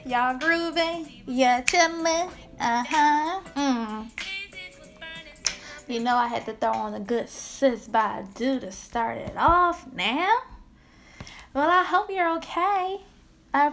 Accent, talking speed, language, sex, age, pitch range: American, 125 wpm, English, female, 10-29, 230-295 Hz